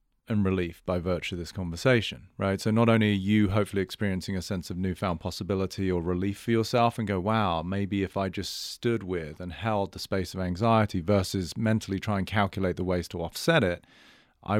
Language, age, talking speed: English, 30-49, 205 wpm